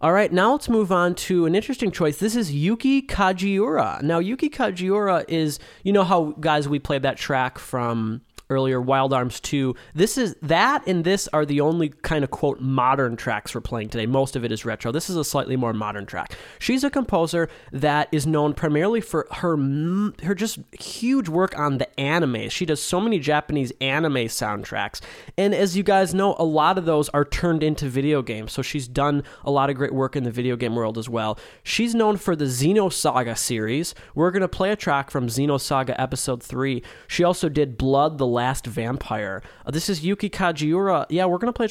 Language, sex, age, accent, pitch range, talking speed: English, male, 20-39, American, 130-180 Hz, 205 wpm